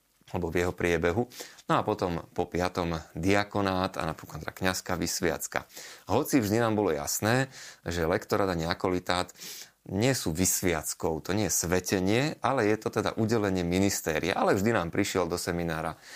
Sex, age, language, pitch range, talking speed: male, 30-49, Slovak, 80-95 Hz, 155 wpm